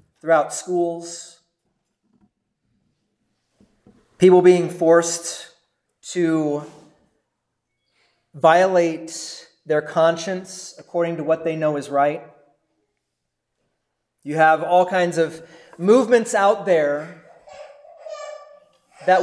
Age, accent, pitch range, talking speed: 30-49, American, 160-195 Hz, 80 wpm